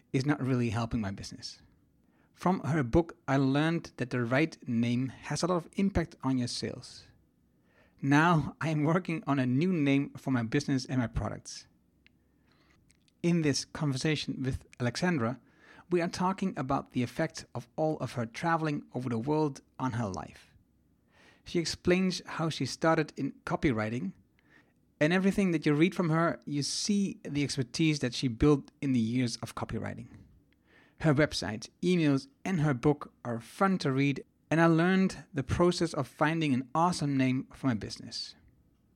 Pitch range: 125-165 Hz